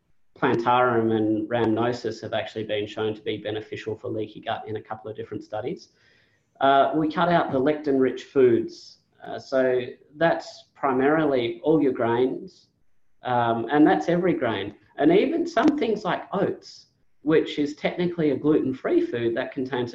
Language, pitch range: English, 115-145 Hz